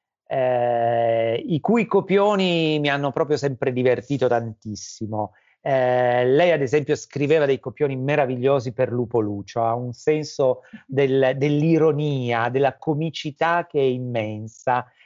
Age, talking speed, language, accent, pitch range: 40-59, 120 wpm, Italian, native, 120-160 Hz